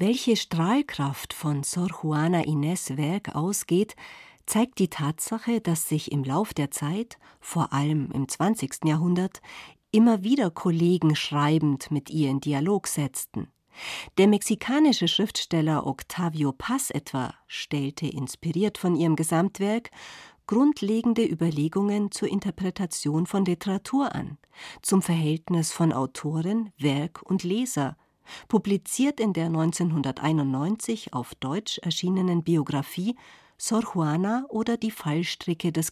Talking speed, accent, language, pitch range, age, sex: 115 wpm, German, German, 150-205 Hz, 50-69, female